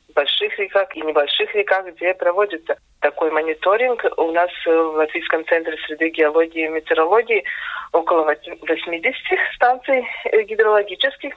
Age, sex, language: 20-39, female, Russian